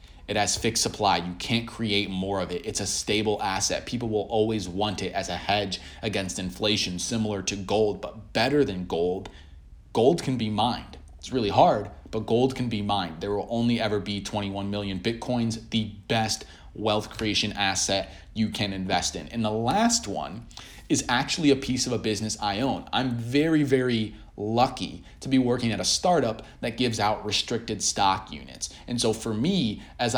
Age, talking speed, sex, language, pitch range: 30-49, 185 wpm, male, English, 100-125 Hz